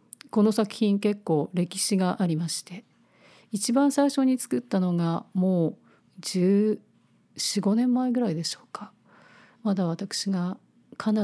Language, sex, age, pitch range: Japanese, female, 40-59, 175-225 Hz